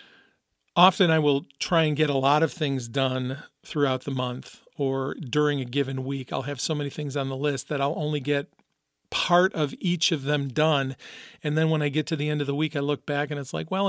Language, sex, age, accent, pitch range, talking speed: English, male, 40-59, American, 140-170 Hz, 240 wpm